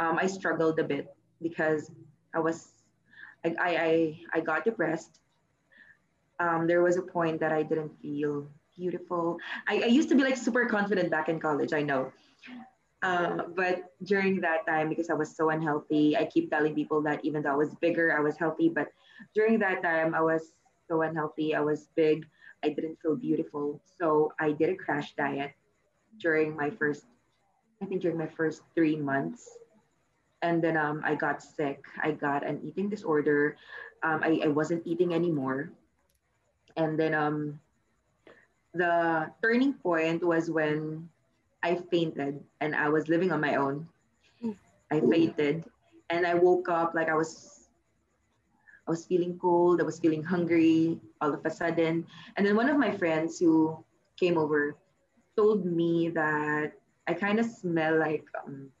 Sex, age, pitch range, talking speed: female, 20-39, 150-175 Hz, 165 wpm